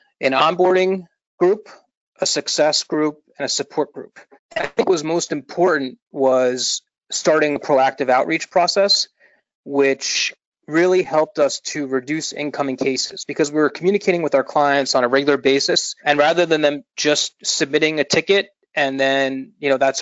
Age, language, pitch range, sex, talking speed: 30-49, English, 135-155 Hz, male, 160 wpm